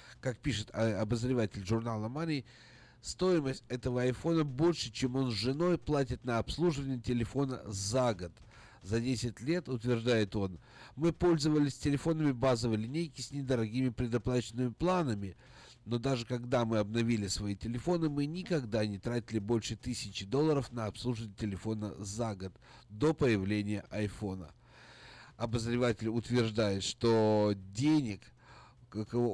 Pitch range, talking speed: 110-140 Hz, 125 wpm